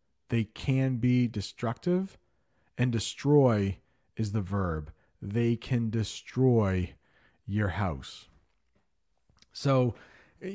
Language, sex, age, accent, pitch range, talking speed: English, male, 40-59, American, 85-120 Hz, 90 wpm